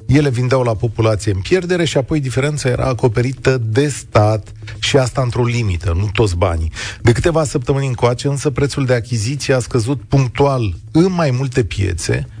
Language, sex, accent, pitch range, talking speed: Romanian, male, native, 105-140 Hz, 170 wpm